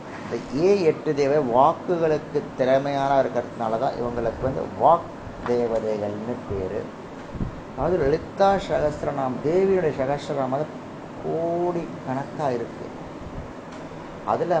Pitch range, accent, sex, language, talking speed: 115-150 Hz, native, male, Tamil, 80 wpm